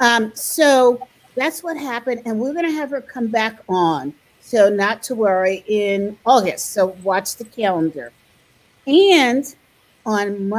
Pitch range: 190-245 Hz